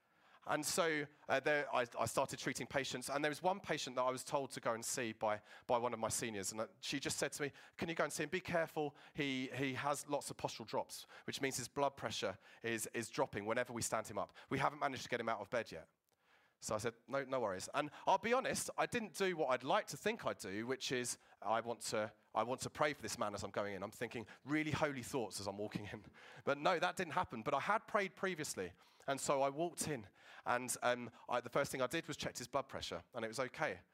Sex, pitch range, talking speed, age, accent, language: male, 115-150 Hz, 265 wpm, 30-49, British, English